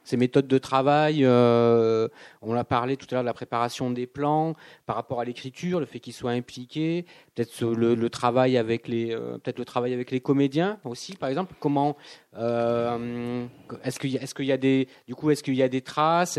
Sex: male